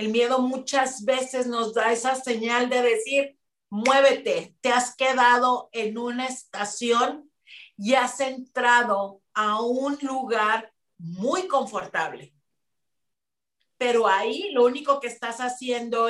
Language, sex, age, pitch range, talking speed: Spanish, female, 40-59, 215-255 Hz, 120 wpm